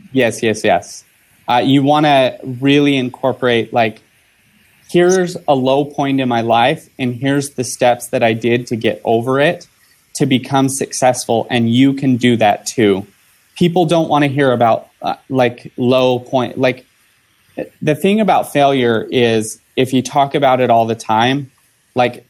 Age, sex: 30-49, male